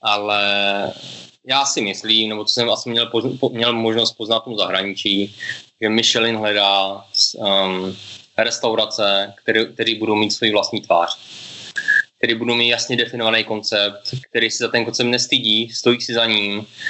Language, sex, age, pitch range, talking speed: English, male, 20-39, 110-130 Hz, 150 wpm